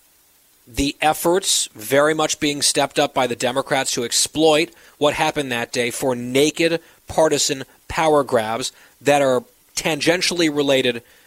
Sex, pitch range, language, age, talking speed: male, 130-165 Hz, English, 30-49, 135 wpm